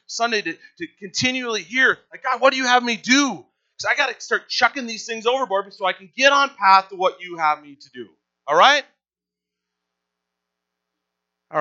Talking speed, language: 195 wpm, English